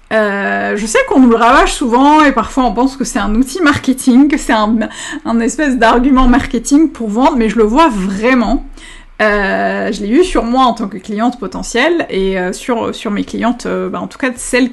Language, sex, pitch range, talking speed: French, female, 205-260 Hz, 225 wpm